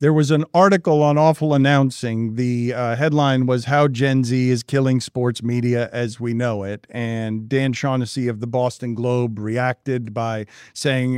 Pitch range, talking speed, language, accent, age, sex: 125-165 Hz, 170 wpm, English, American, 50-69, male